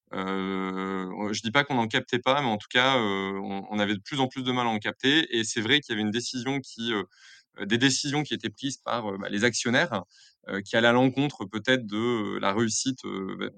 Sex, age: male, 20-39